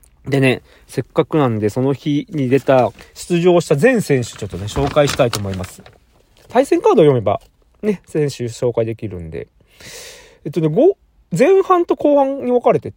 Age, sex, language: 40-59, male, Japanese